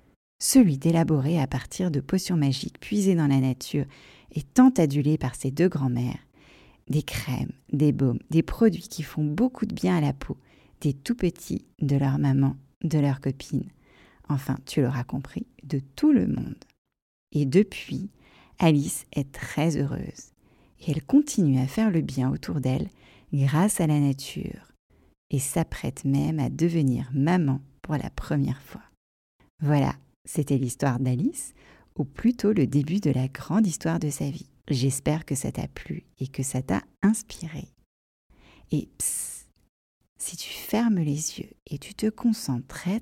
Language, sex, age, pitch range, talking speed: French, female, 40-59, 135-170 Hz, 160 wpm